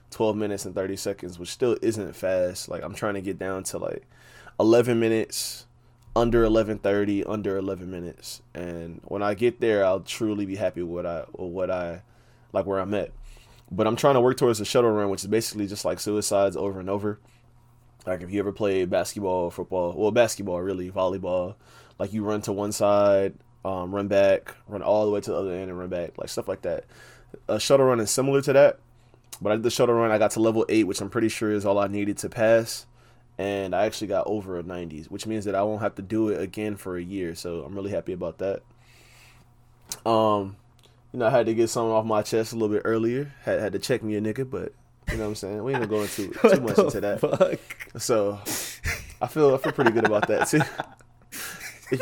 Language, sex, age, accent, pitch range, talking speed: English, male, 20-39, American, 95-120 Hz, 230 wpm